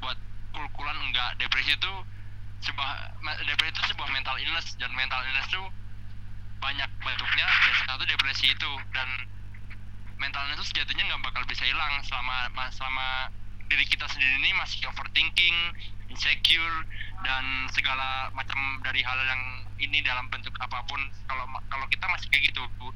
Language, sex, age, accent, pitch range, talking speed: Indonesian, male, 20-39, native, 100-130 Hz, 150 wpm